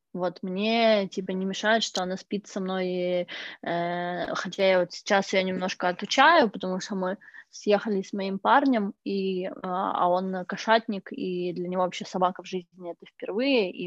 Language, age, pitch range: Russian, 20-39, 185-220 Hz